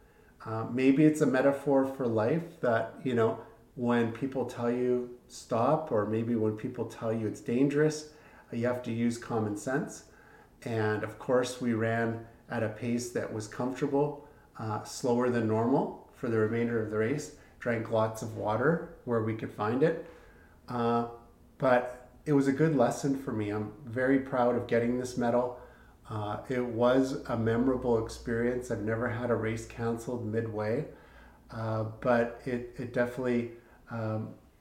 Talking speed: 165 wpm